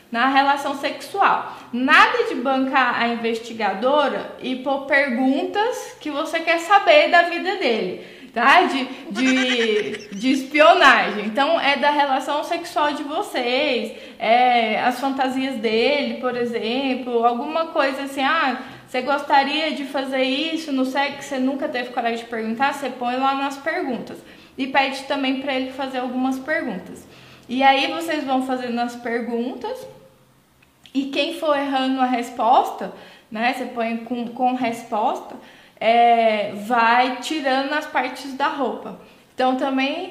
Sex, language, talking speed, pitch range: female, Portuguese, 140 wpm, 240-290 Hz